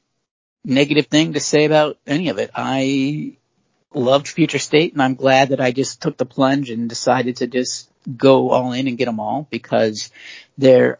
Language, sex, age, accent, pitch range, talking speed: English, male, 40-59, American, 120-145 Hz, 185 wpm